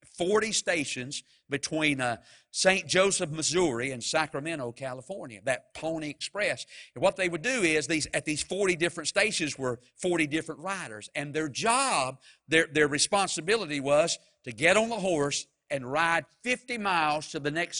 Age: 50-69